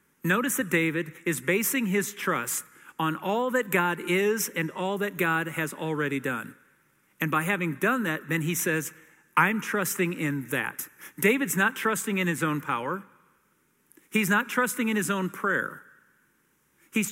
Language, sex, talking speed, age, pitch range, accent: English, male, 160 wpm, 50-69, 160-210 Hz, American